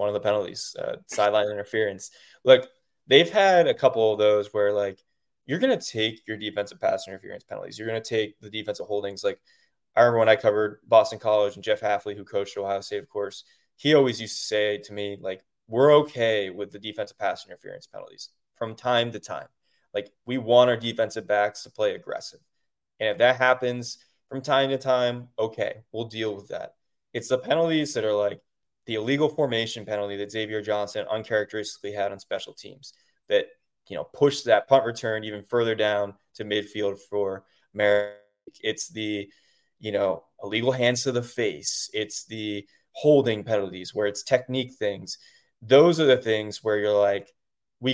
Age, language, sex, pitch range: 20-39, English, male, 105-130 Hz